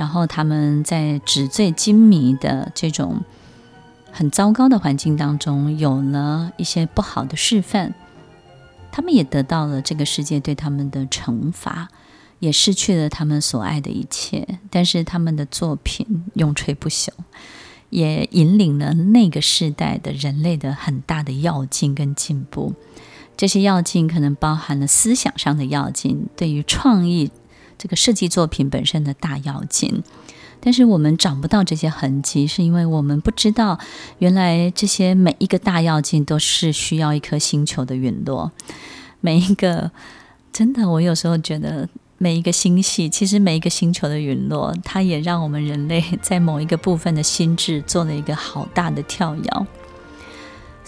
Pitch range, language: 150-185 Hz, Chinese